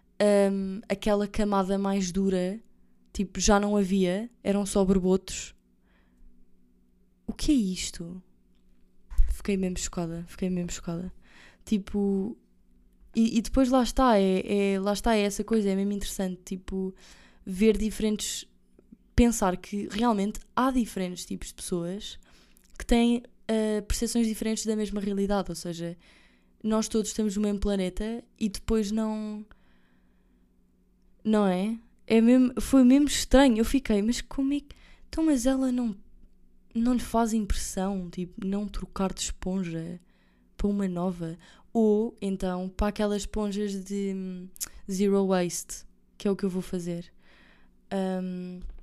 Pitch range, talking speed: 175-215 Hz, 140 wpm